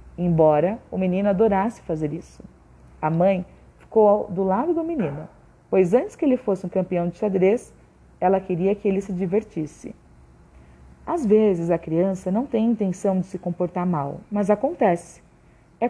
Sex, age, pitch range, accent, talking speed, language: female, 40-59, 170-230 Hz, Brazilian, 160 wpm, Portuguese